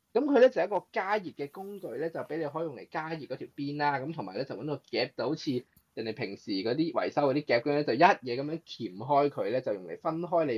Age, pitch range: 20-39, 130-165 Hz